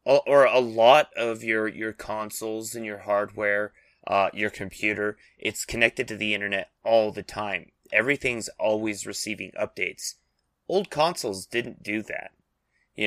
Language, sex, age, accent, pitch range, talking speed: English, male, 30-49, American, 100-120 Hz, 140 wpm